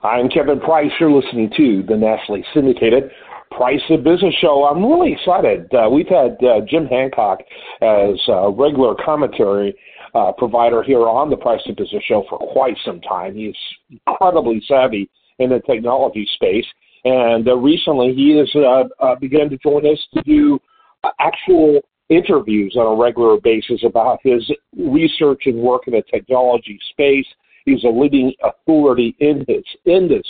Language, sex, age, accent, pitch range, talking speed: English, male, 50-69, American, 125-170 Hz, 160 wpm